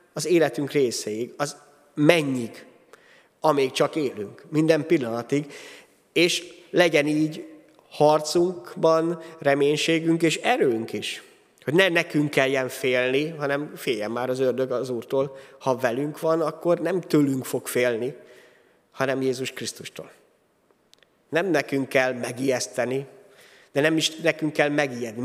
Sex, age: male, 30-49